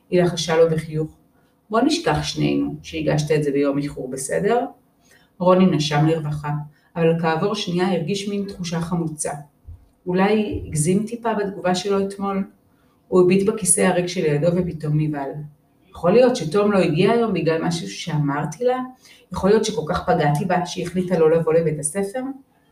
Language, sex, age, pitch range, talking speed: Hebrew, female, 40-59, 160-205 Hz, 155 wpm